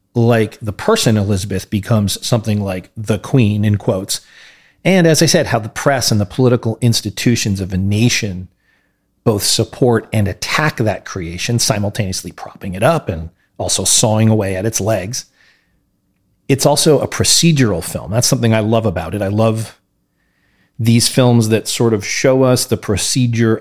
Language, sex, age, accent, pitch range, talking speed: English, male, 40-59, American, 100-125 Hz, 165 wpm